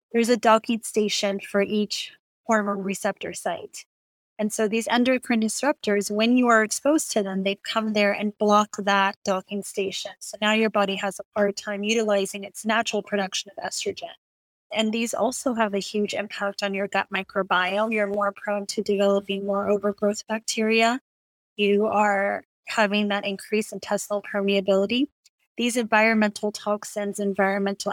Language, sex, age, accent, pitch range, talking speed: English, female, 20-39, American, 200-225 Hz, 155 wpm